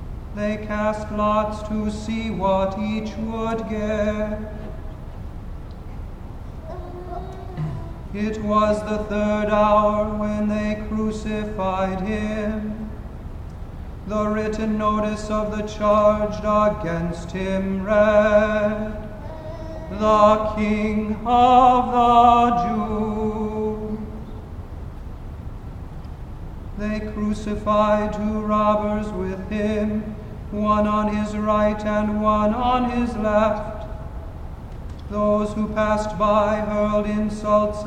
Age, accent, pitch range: 30-49, American, 210-240 Hz